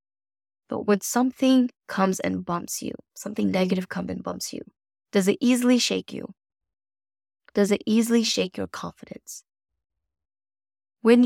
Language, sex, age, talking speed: English, female, 20-39, 135 wpm